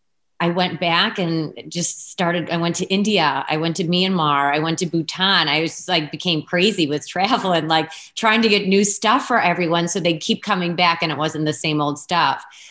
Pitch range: 150-180 Hz